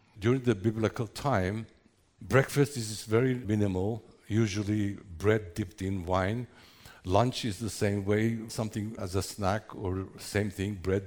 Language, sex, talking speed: English, male, 140 wpm